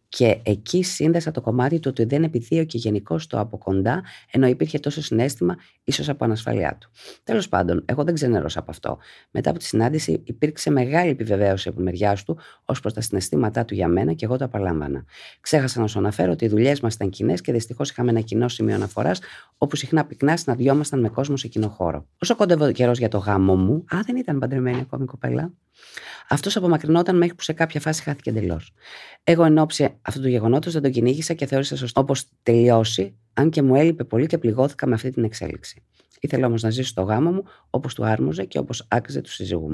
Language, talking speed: Greek, 210 wpm